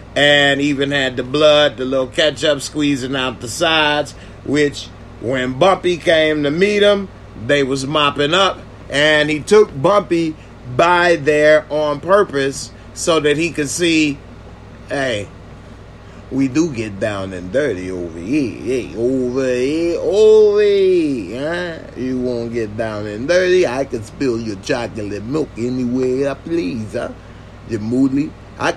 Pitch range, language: 115-155 Hz, English